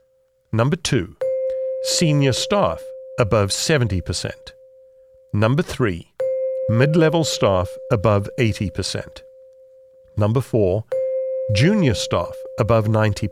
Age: 50-69